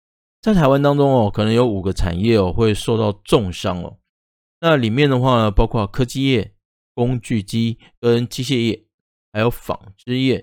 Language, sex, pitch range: Chinese, male, 100-130 Hz